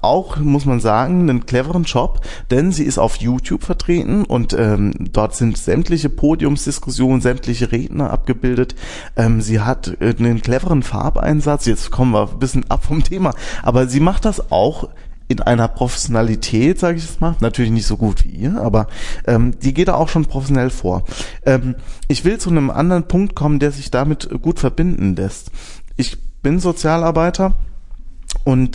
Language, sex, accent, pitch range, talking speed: German, male, German, 115-145 Hz, 165 wpm